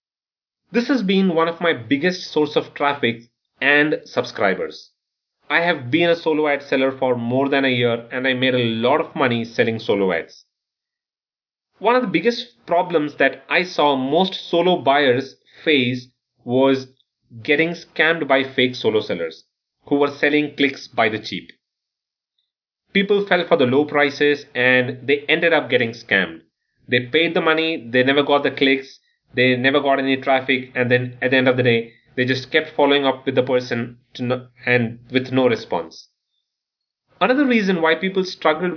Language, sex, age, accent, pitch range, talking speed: English, male, 30-49, Indian, 125-165 Hz, 170 wpm